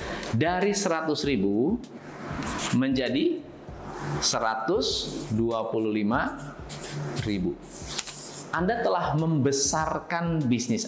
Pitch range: 155-235 Hz